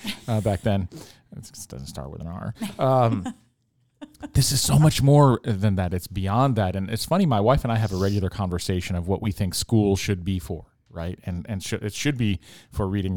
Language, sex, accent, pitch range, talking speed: English, male, American, 90-115 Hz, 225 wpm